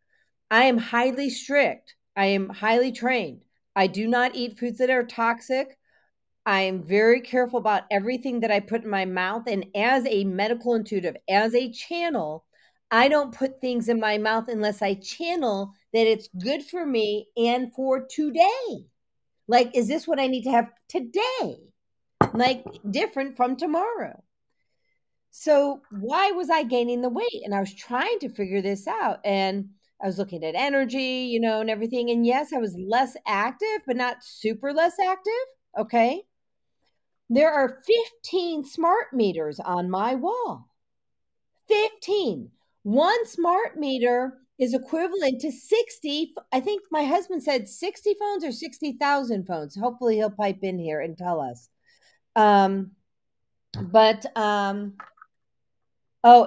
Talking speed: 150 wpm